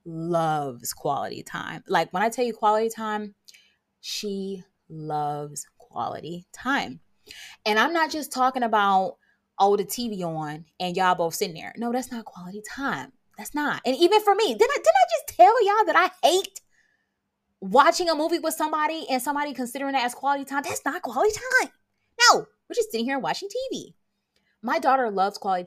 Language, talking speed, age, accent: English, 180 wpm, 20-39, American